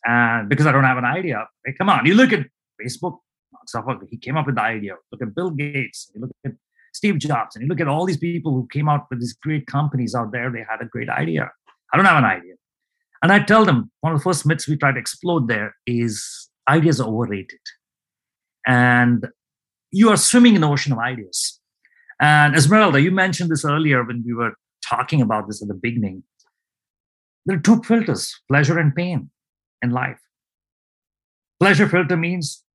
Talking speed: 200 wpm